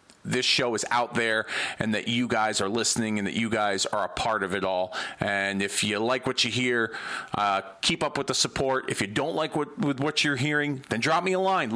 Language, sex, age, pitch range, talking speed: English, male, 40-59, 120-180 Hz, 245 wpm